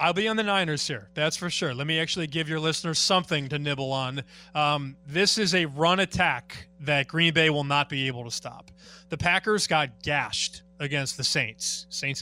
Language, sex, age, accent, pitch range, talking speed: English, male, 30-49, American, 145-180 Hz, 205 wpm